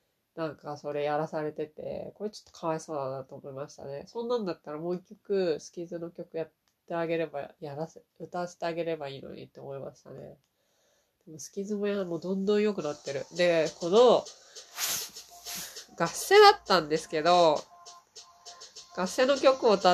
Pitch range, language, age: 160-210 Hz, Japanese, 20-39